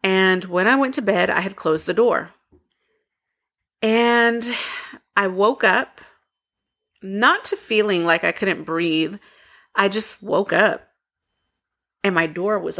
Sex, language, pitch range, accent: female, English, 170-225 Hz, American